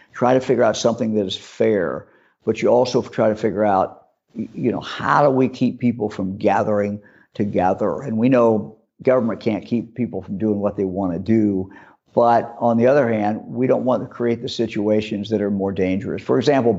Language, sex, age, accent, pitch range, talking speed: English, male, 50-69, American, 105-120 Hz, 205 wpm